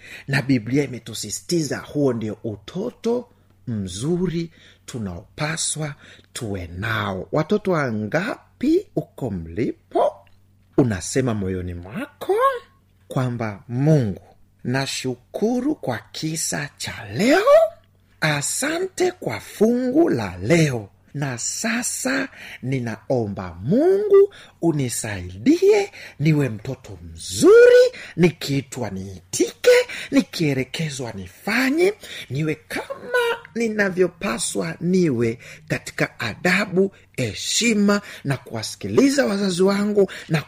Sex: male